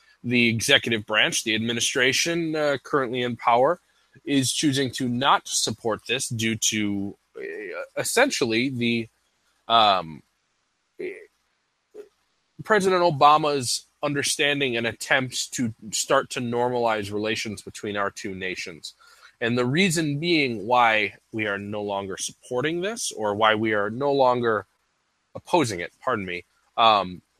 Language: English